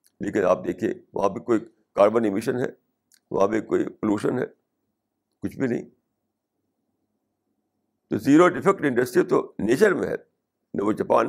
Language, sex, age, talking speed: Urdu, male, 60-79, 150 wpm